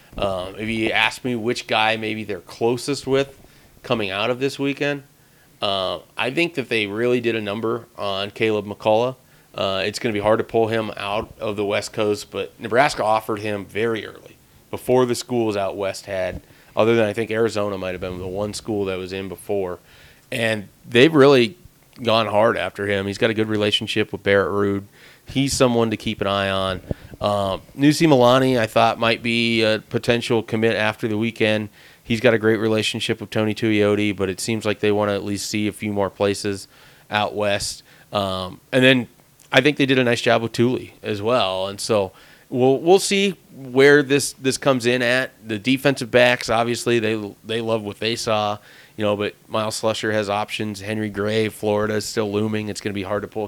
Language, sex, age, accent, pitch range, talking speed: English, male, 30-49, American, 105-120 Hz, 205 wpm